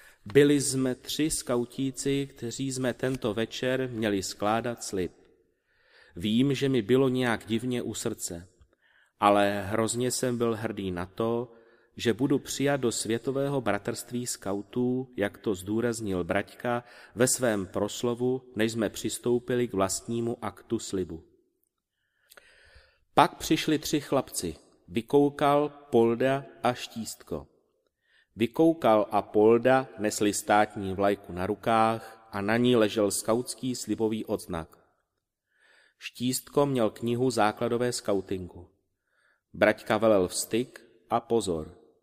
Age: 30-49